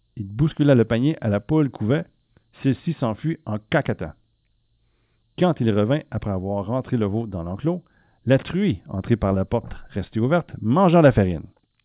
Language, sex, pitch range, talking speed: French, male, 105-145 Hz, 165 wpm